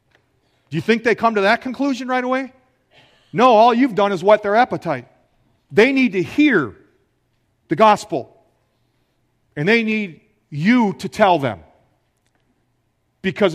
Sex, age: male, 40-59